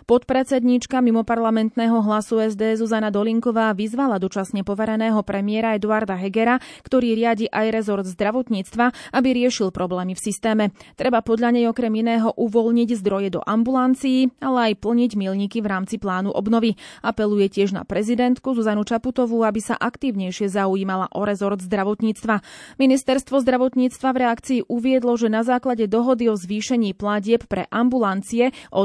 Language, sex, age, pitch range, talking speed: Slovak, female, 20-39, 205-245 Hz, 140 wpm